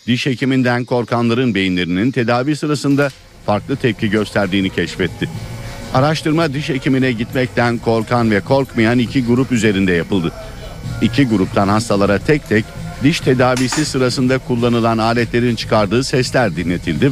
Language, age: Turkish, 60-79